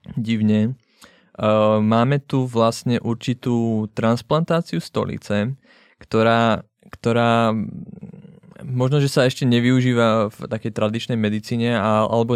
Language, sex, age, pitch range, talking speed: Czech, male, 20-39, 110-125 Hz, 90 wpm